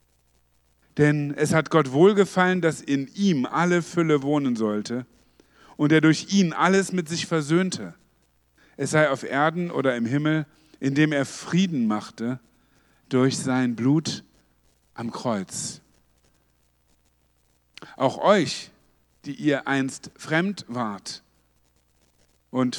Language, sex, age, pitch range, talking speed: German, male, 50-69, 100-155 Hz, 115 wpm